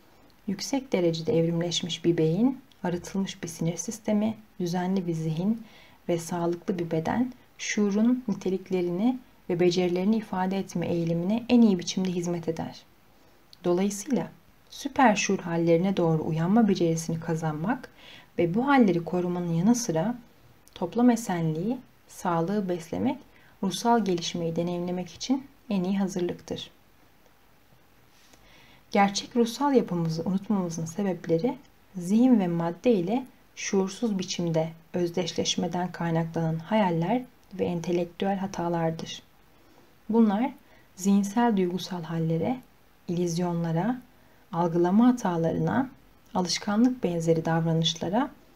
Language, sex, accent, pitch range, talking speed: Turkish, female, native, 170-225 Hz, 100 wpm